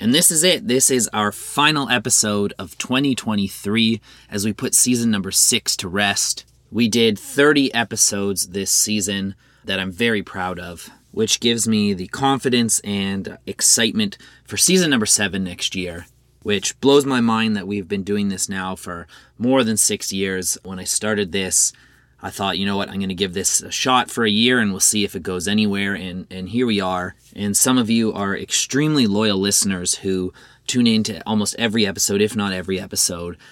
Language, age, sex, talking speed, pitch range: English, 30-49, male, 190 wpm, 95-120 Hz